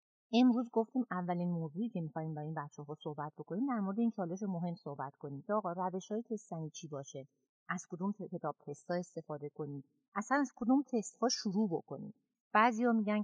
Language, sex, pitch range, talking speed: Persian, female, 155-210 Hz, 165 wpm